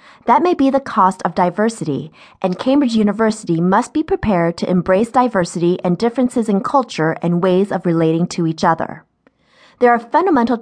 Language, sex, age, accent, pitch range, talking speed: English, female, 30-49, American, 170-235 Hz, 170 wpm